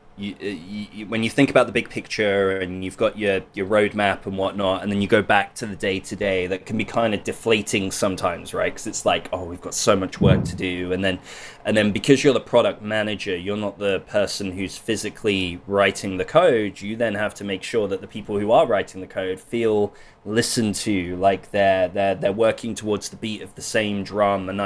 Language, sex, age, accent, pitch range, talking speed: English, male, 20-39, British, 100-120 Hz, 230 wpm